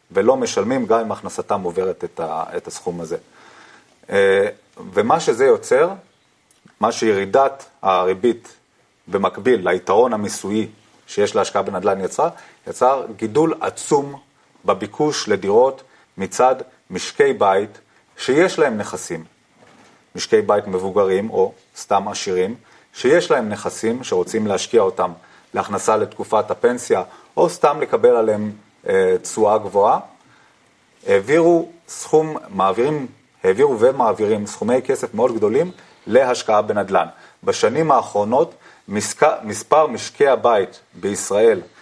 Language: Hebrew